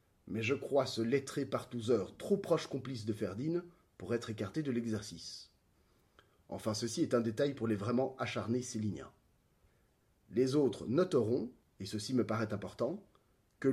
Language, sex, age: French, male, 30-49